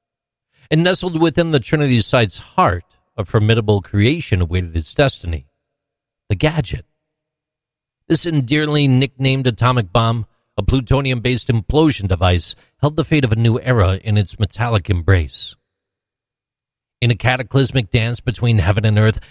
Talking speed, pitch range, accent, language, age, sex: 135 wpm, 100-135 Hz, American, English, 40-59, male